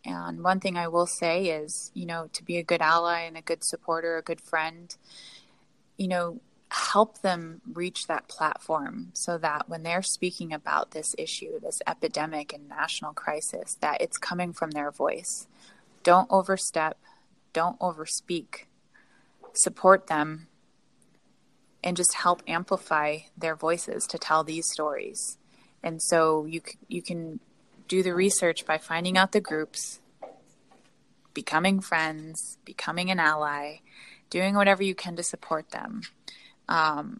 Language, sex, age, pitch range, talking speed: English, female, 20-39, 160-185 Hz, 145 wpm